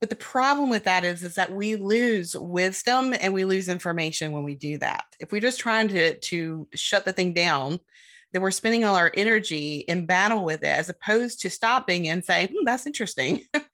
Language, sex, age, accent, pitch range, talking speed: English, female, 30-49, American, 165-215 Hz, 210 wpm